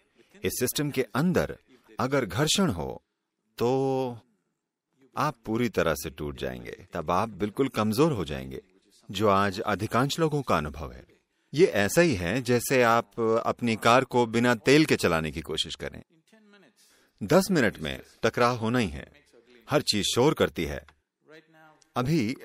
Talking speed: 150 wpm